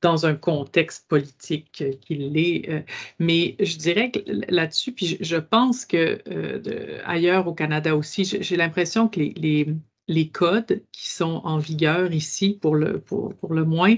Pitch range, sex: 155-190 Hz, female